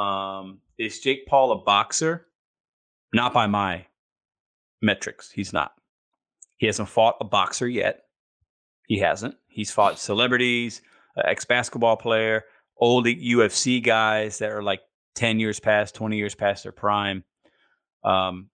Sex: male